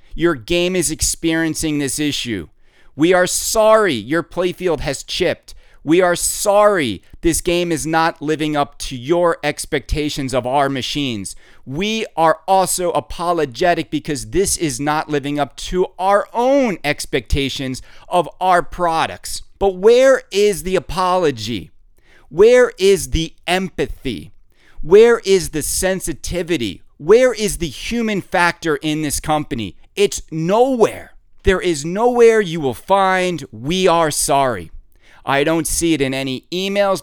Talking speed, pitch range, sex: 140 wpm, 135-185 Hz, male